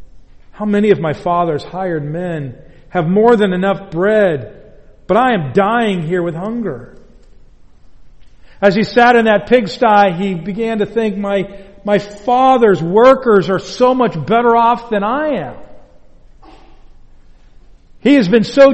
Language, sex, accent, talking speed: English, male, American, 145 wpm